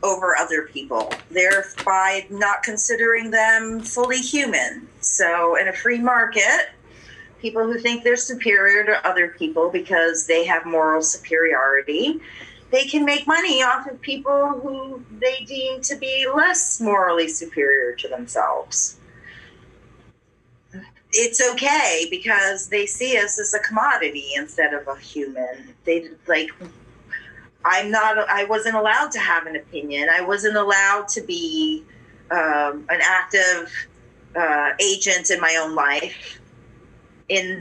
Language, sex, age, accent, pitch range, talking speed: English, female, 40-59, American, 165-255 Hz, 135 wpm